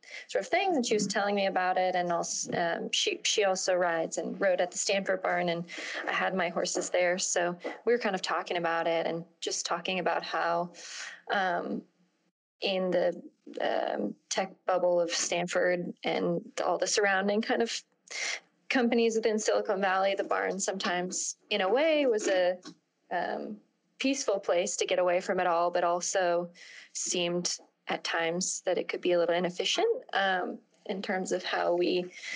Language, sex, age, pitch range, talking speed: English, female, 20-39, 175-215 Hz, 175 wpm